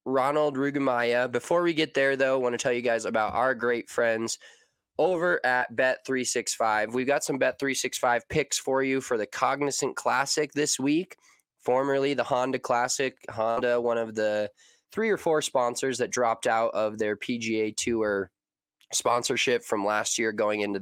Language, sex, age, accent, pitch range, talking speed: English, male, 20-39, American, 115-135 Hz, 175 wpm